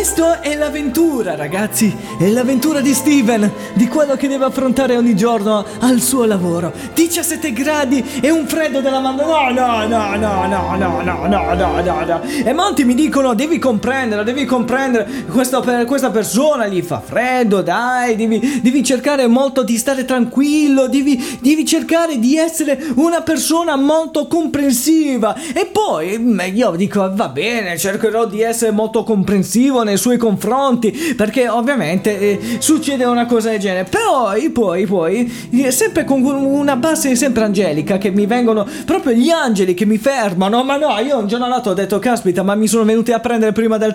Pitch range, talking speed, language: 220-280 Hz, 170 wpm, Italian